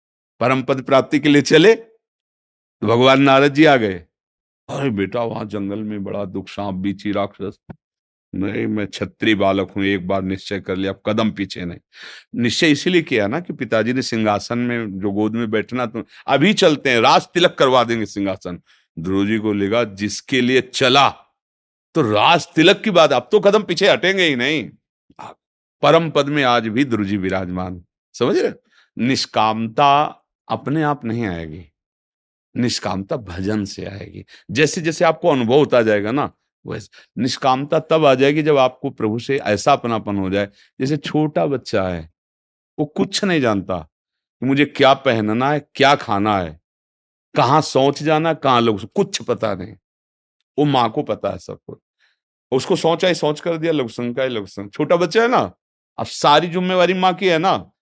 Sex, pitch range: male, 100-145 Hz